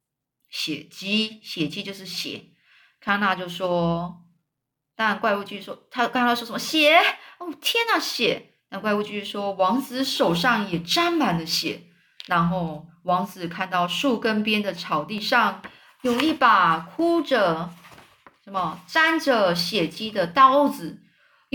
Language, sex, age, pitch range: Chinese, female, 20-39, 180-270 Hz